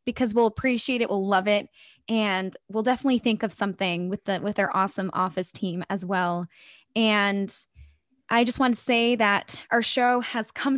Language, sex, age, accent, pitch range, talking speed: English, female, 10-29, American, 195-245 Hz, 185 wpm